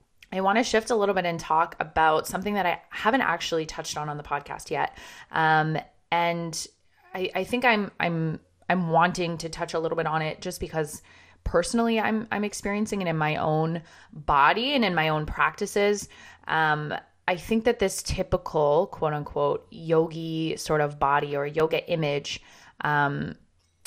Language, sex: English, female